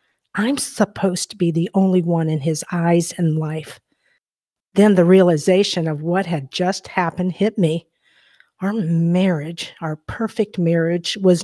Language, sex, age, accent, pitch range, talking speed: English, female, 50-69, American, 165-190 Hz, 145 wpm